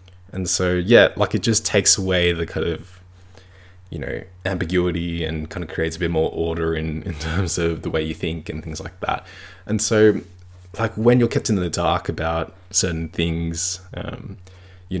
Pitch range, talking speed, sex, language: 85-95 Hz, 190 wpm, male, English